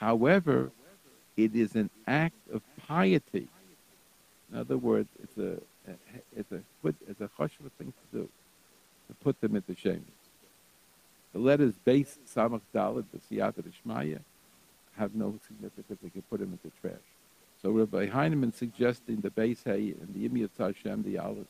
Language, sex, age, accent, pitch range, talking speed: English, male, 60-79, American, 110-140 Hz, 150 wpm